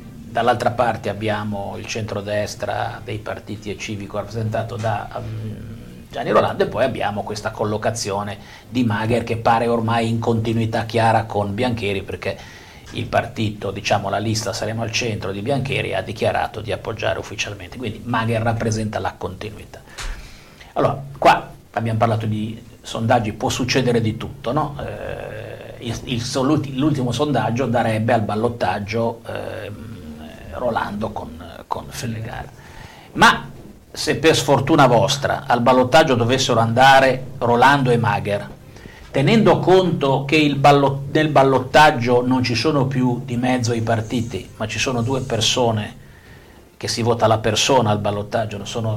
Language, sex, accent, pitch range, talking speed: Italian, male, native, 110-130 Hz, 135 wpm